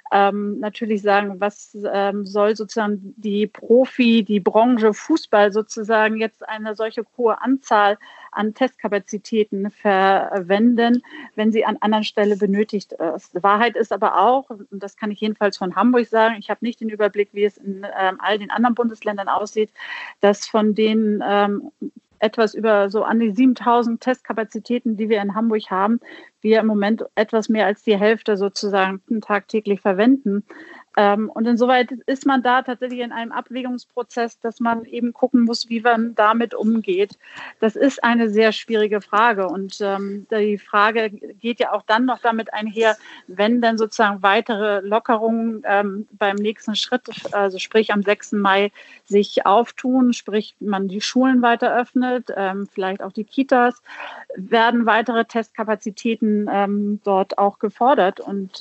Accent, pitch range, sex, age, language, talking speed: German, 205-235 Hz, female, 40-59, German, 155 wpm